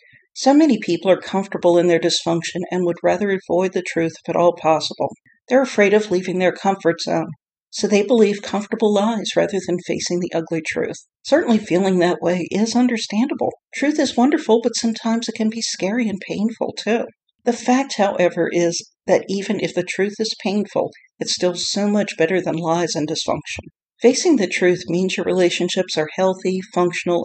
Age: 50-69